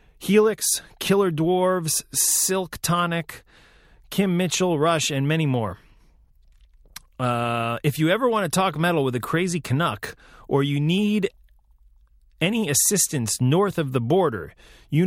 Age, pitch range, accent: 30-49, 105-145 Hz, American